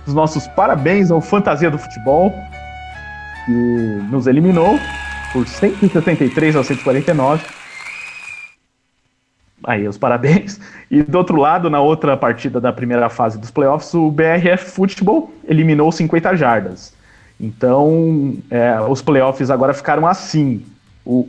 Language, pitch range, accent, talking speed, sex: English, 130-160 Hz, Brazilian, 120 wpm, male